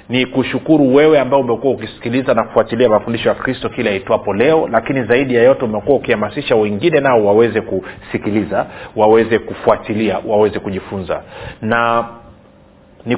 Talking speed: 140 wpm